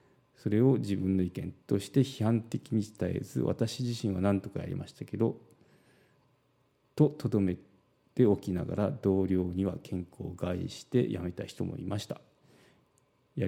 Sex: male